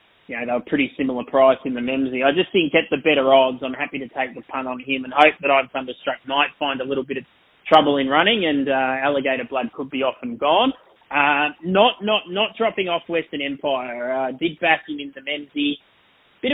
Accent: Australian